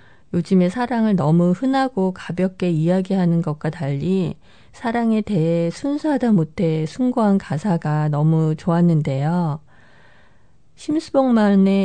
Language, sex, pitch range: Korean, female, 160-195 Hz